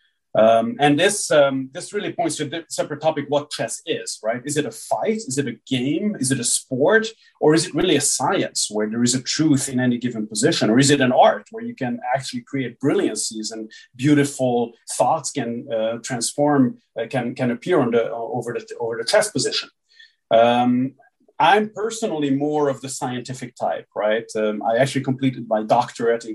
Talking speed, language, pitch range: 200 wpm, English, 115-145 Hz